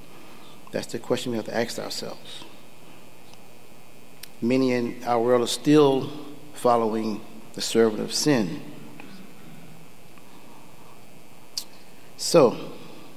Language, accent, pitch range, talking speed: English, American, 115-140 Hz, 90 wpm